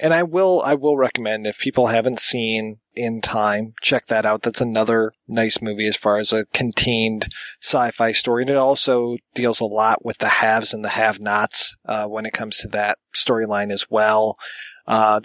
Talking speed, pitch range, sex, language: 190 wpm, 110-140 Hz, male, English